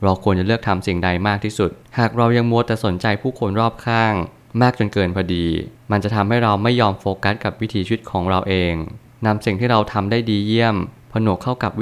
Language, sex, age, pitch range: Thai, male, 20-39, 100-120 Hz